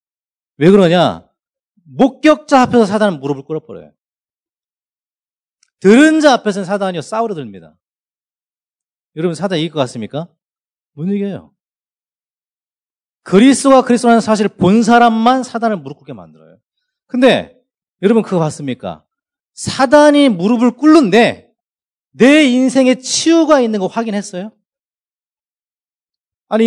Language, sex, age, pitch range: Korean, male, 40-59, 170-255 Hz